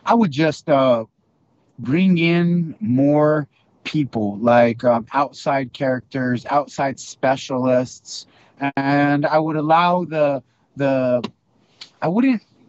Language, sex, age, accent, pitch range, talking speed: English, male, 30-49, American, 120-145 Hz, 105 wpm